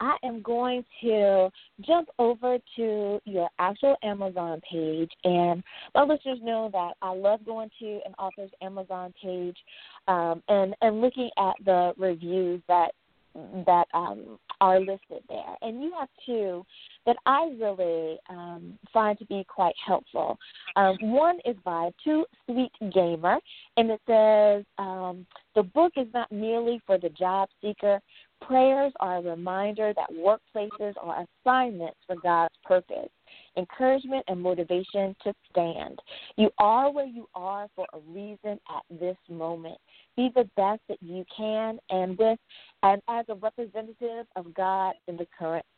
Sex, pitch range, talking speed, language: female, 180-230 Hz, 150 wpm, English